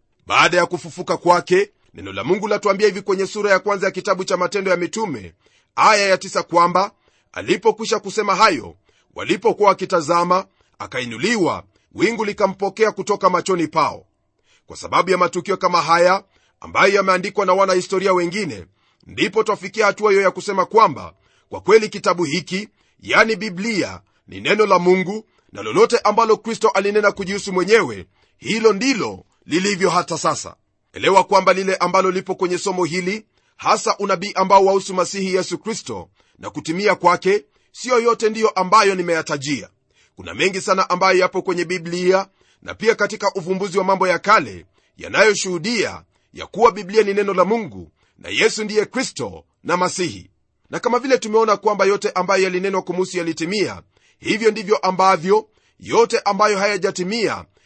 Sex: male